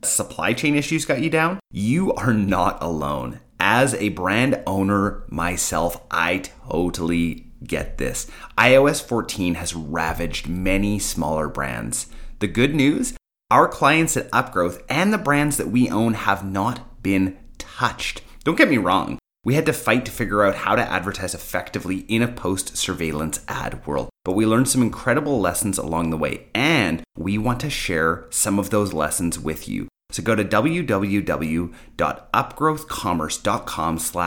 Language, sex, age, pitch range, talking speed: English, male, 30-49, 85-120 Hz, 150 wpm